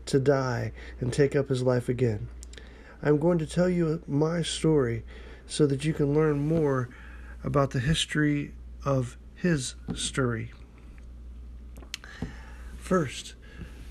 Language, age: English, 40-59